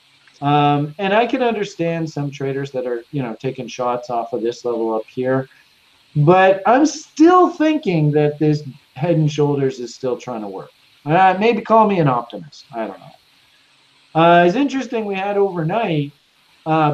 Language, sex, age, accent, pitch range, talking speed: English, male, 40-59, American, 140-185 Hz, 175 wpm